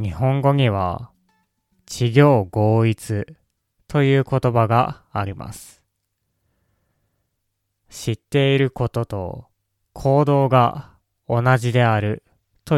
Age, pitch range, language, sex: 20-39, 100-130 Hz, Japanese, male